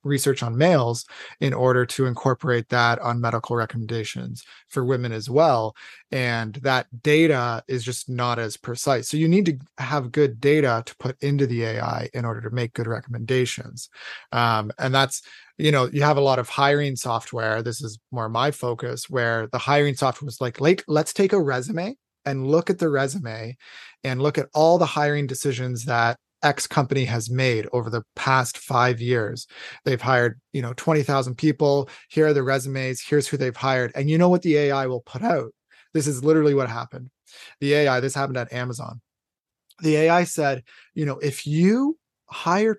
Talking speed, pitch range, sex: 185 wpm, 125-150 Hz, male